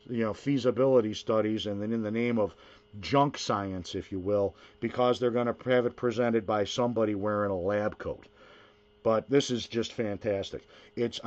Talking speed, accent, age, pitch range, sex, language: 175 wpm, American, 50-69, 105-125 Hz, male, English